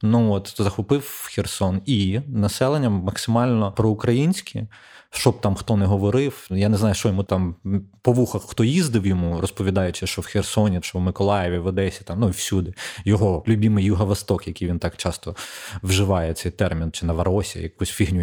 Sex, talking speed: male, 175 wpm